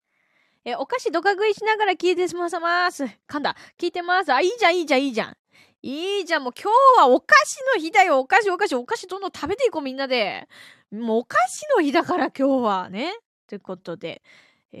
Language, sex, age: Japanese, female, 20-39